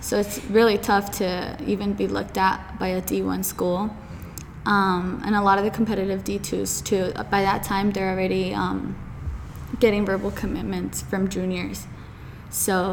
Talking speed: 165 wpm